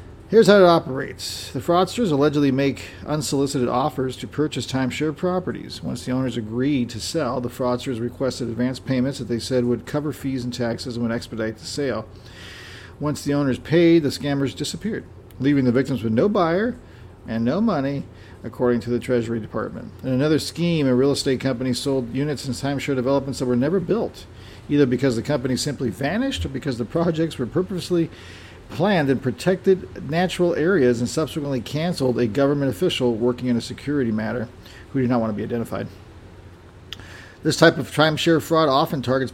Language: English